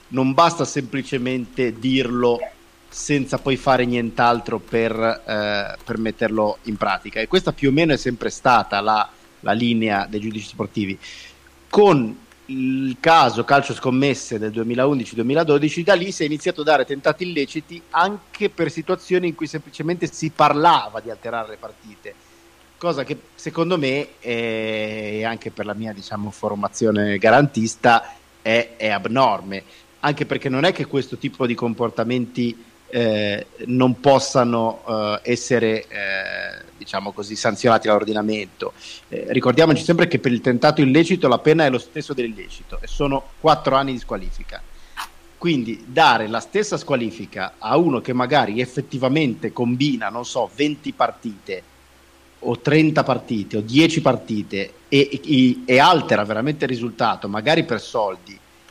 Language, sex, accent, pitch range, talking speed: Italian, male, native, 110-145 Hz, 140 wpm